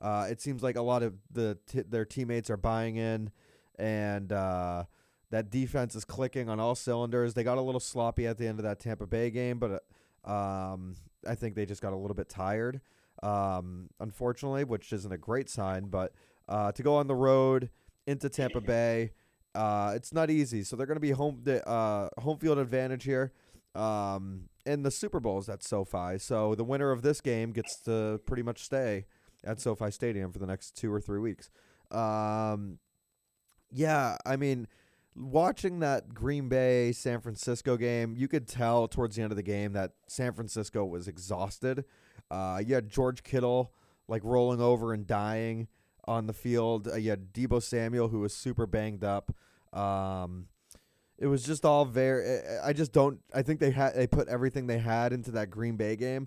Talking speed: 190 wpm